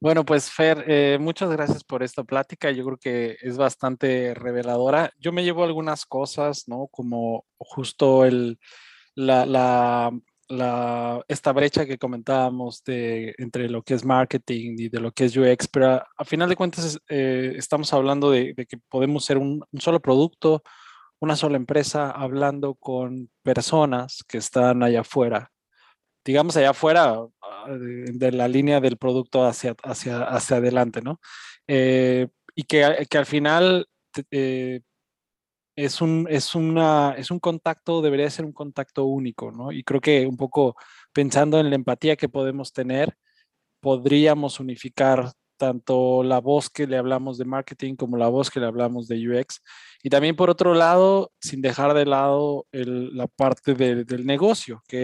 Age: 20-39